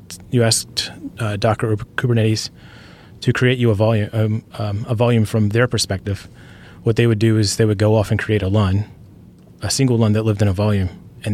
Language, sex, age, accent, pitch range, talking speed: English, male, 30-49, American, 105-115 Hz, 210 wpm